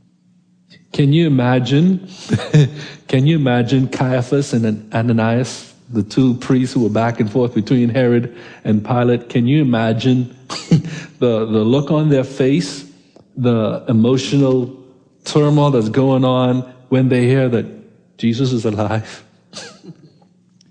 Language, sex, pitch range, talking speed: English, male, 120-150 Hz, 125 wpm